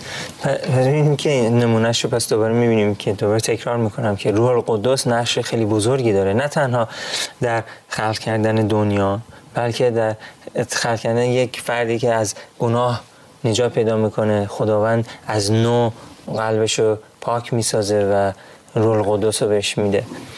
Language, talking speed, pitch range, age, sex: Persian, 145 wpm, 105-125 Hz, 30-49, male